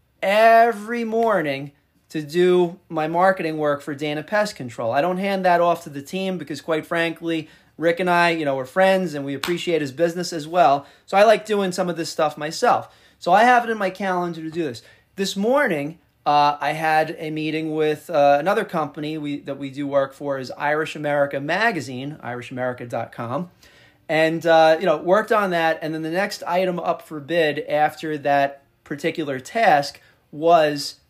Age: 30-49